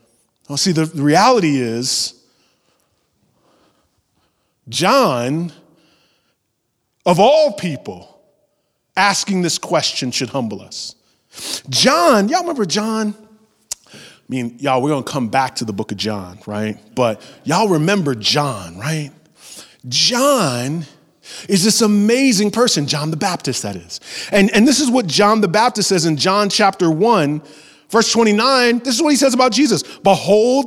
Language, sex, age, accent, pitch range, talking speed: English, male, 30-49, American, 180-250 Hz, 140 wpm